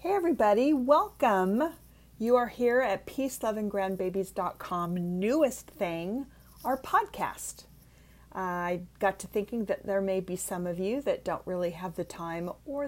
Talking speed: 155 wpm